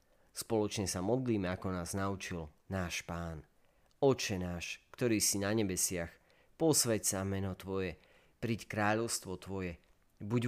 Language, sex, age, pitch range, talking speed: Slovak, male, 40-59, 90-115 Hz, 125 wpm